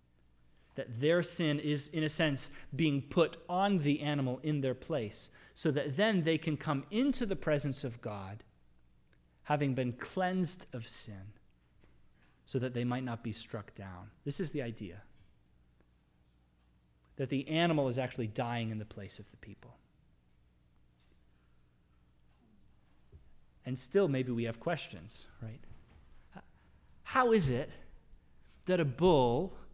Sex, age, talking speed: male, 30-49, 135 wpm